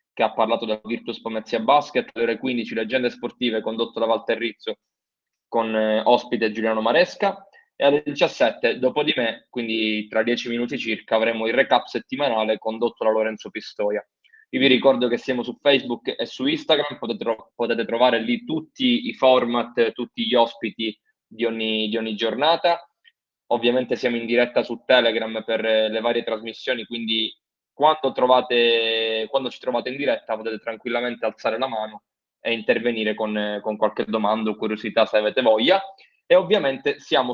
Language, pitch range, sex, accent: Italian, 110-130 Hz, male, native